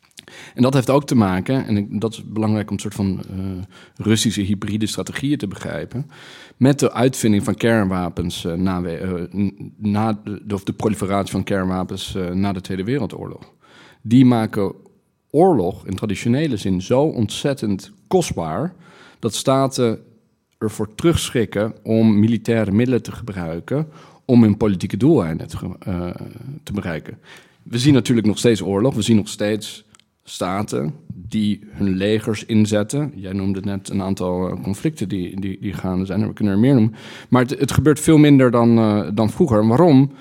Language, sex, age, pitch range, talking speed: Dutch, male, 40-59, 100-125 Hz, 160 wpm